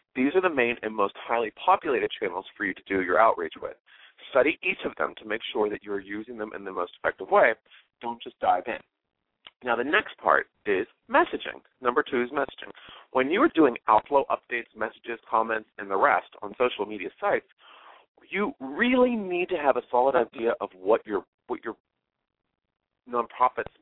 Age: 30-49